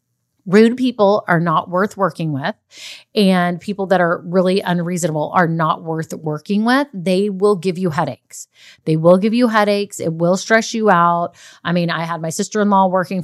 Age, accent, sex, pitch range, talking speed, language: 30-49, American, female, 170-210 Hz, 190 wpm, English